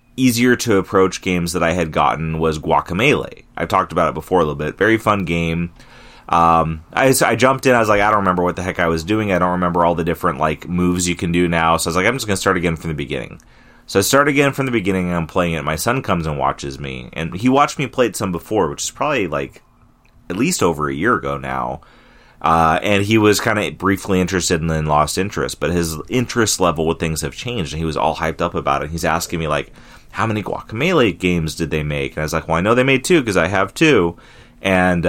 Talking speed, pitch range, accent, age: 265 wpm, 80-110 Hz, American, 30-49